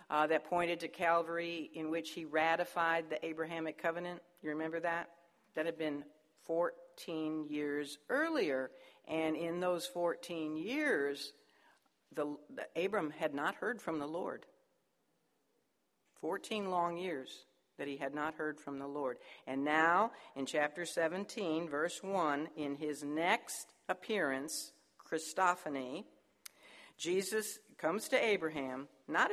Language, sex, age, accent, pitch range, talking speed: English, female, 60-79, American, 155-190 Hz, 130 wpm